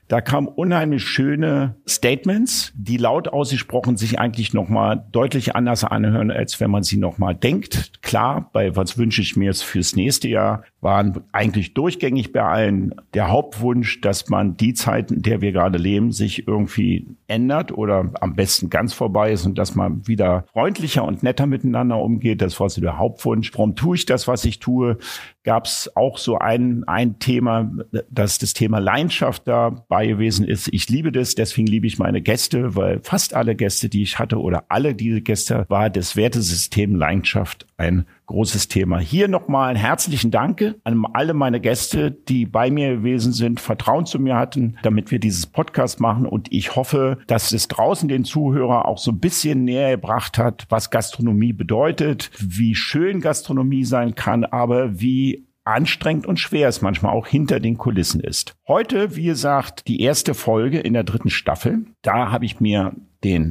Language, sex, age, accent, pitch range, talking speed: German, male, 50-69, German, 105-130 Hz, 180 wpm